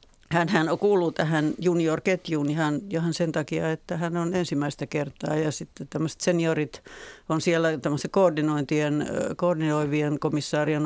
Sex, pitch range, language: female, 150-175 Hz, Finnish